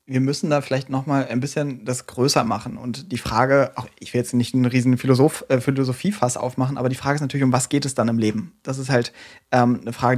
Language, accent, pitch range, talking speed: German, German, 125-145 Hz, 255 wpm